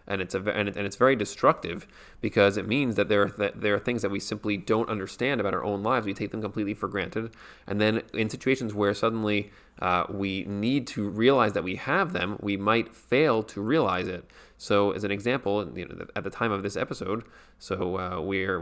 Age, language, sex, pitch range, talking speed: 30-49, English, male, 100-110 Hz, 220 wpm